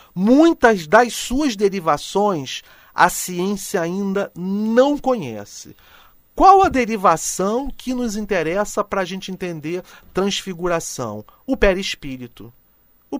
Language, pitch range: Portuguese, 160-225 Hz